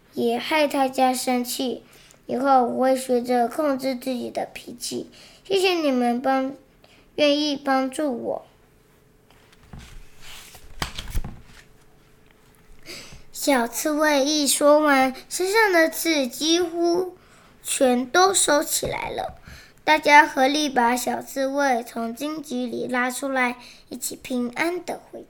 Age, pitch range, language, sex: 10-29, 250-305 Hz, Chinese, male